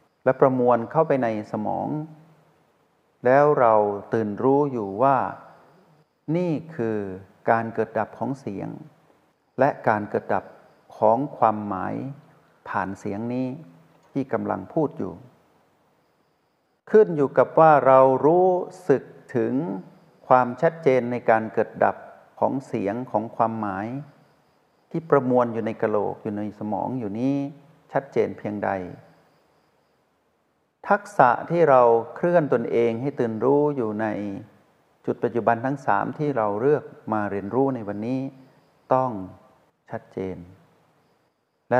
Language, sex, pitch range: Thai, male, 105-140 Hz